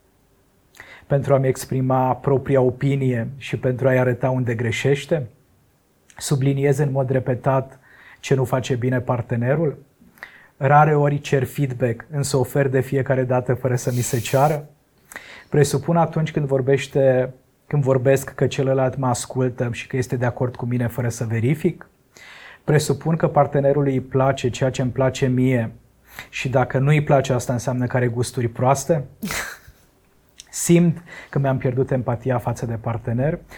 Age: 30-49